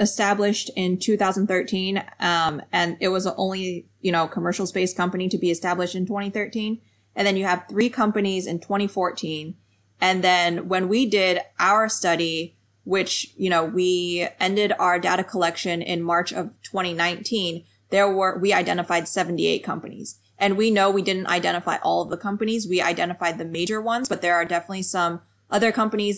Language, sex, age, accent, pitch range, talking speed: English, female, 20-39, American, 175-205 Hz, 170 wpm